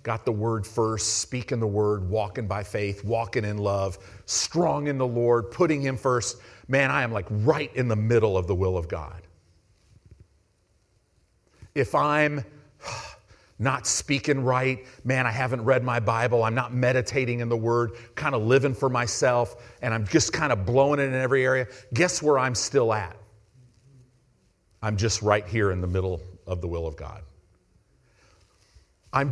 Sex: male